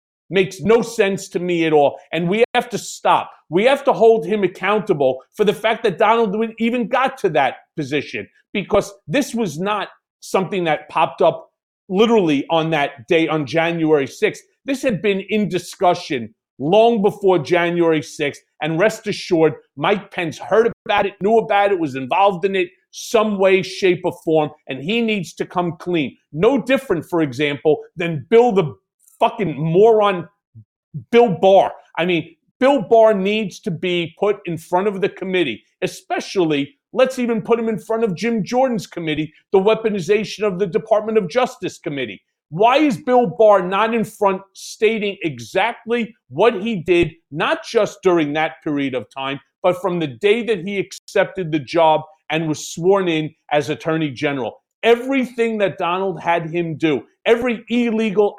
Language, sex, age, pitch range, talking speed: English, male, 40-59, 165-225 Hz, 170 wpm